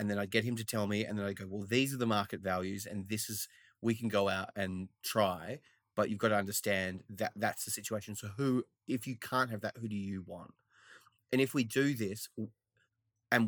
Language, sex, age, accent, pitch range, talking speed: English, male, 30-49, Australian, 100-115 Hz, 235 wpm